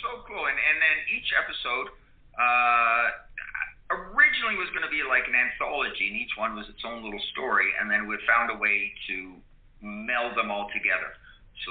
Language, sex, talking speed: English, male, 185 wpm